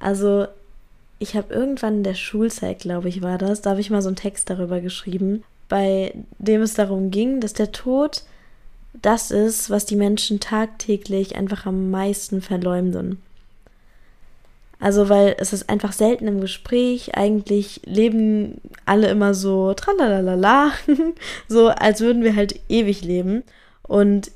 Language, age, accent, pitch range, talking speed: German, 10-29, German, 190-220 Hz, 150 wpm